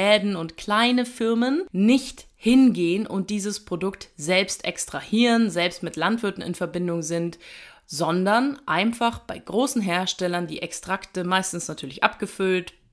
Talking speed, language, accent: 120 wpm, German, German